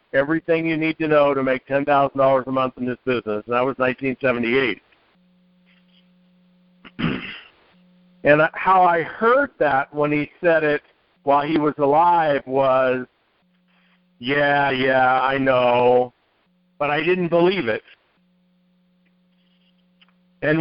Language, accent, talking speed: English, American, 120 wpm